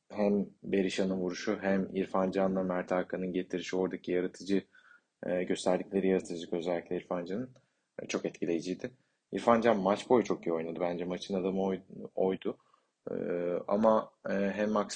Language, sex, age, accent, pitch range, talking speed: Turkish, male, 30-49, native, 95-110 Hz, 125 wpm